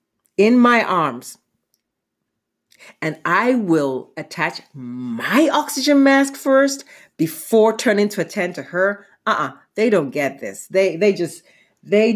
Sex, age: female, 40-59